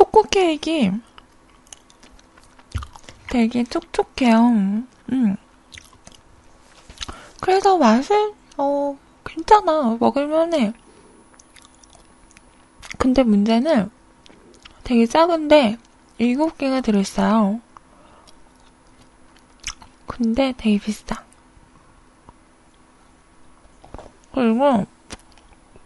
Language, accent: Korean, native